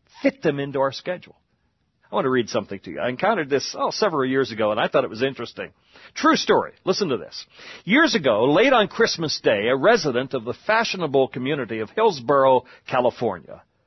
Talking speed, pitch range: 190 wpm, 130-200 Hz